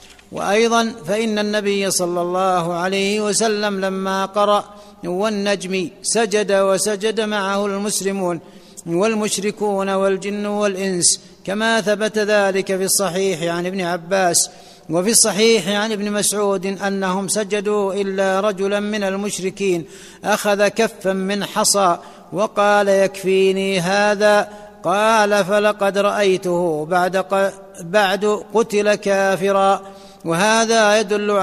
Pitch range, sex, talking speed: 190-210 Hz, male, 95 wpm